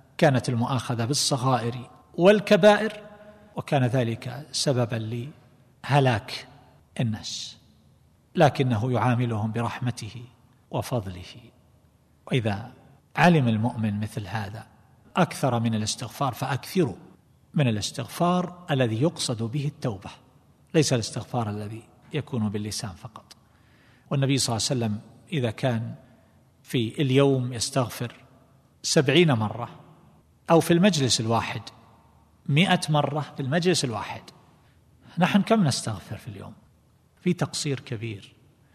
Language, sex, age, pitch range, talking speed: Arabic, male, 50-69, 115-145 Hz, 100 wpm